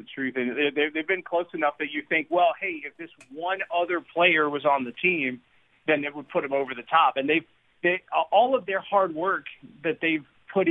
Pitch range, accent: 135-190 Hz, American